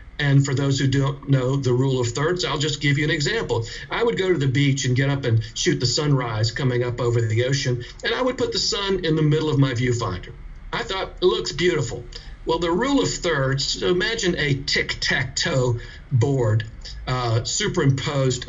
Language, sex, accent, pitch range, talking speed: English, male, American, 125-165 Hz, 200 wpm